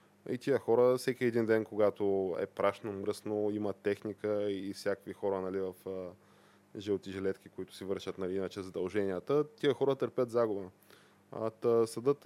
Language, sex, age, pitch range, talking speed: Bulgarian, male, 20-39, 95-115 Hz, 140 wpm